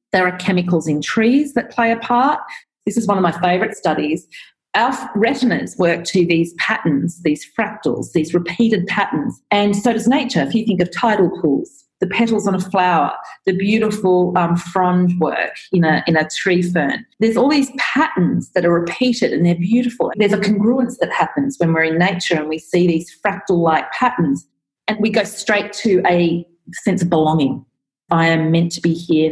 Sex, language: female, English